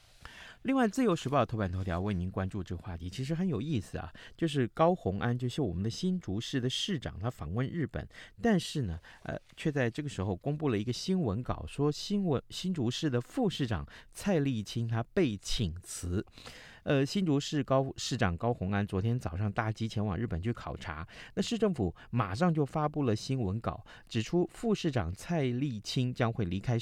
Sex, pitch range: male, 95-135 Hz